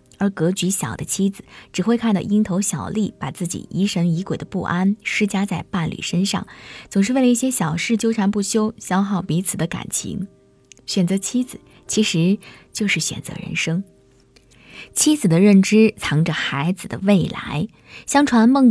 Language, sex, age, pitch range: Chinese, female, 20-39, 175-220 Hz